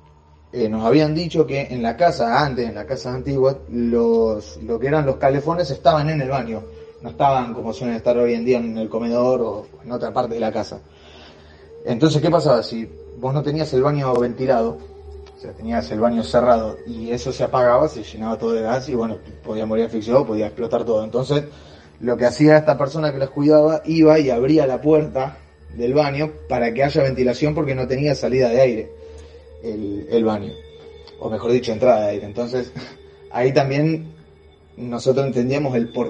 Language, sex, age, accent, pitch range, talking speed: Spanish, male, 20-39, Argentinian, 110-155 Hz, 190 wpm